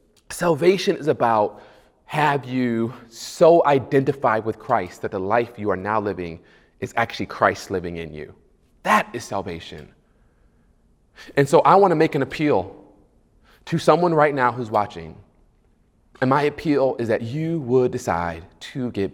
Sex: male